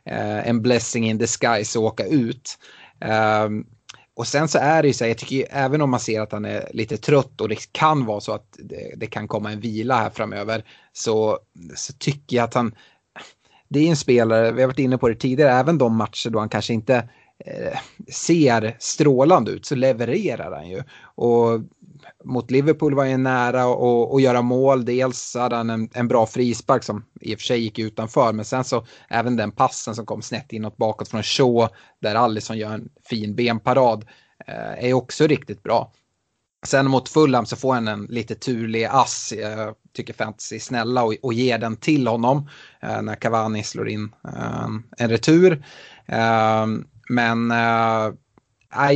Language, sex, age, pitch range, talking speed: Swedish, male, 30-49, 110-130 Hz, 190 wpm